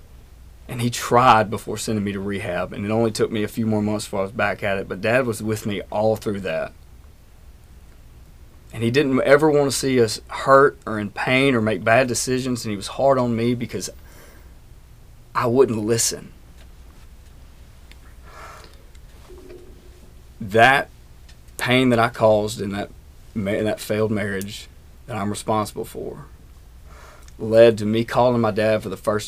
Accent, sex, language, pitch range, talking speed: American, male, English, 80-115 Hz, 165 wpm